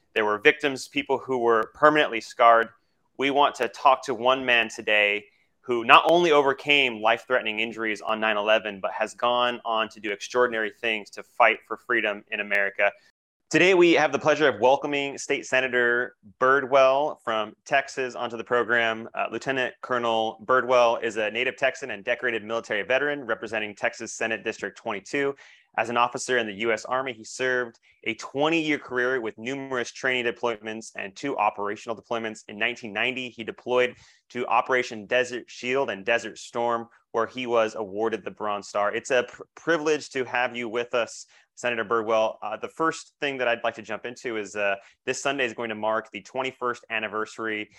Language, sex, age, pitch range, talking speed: English, male, 30-49, 110-130 Hz, 175 wpm